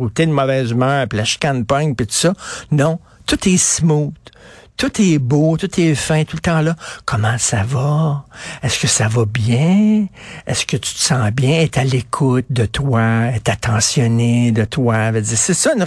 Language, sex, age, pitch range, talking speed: French, male, 60-79, 130-175 Hz, 195 wpm